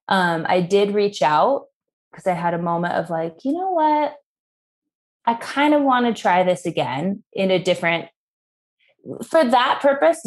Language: English